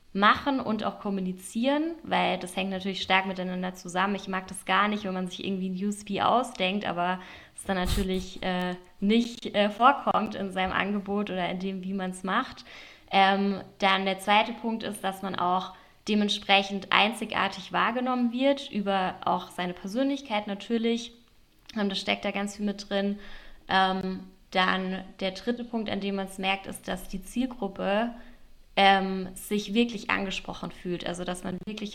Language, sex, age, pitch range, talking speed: German, female, 10-29, 185-210 Hz, 165 wpm